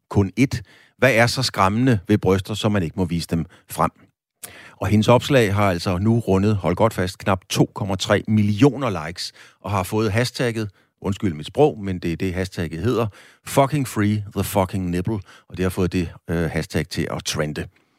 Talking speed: 190 wpm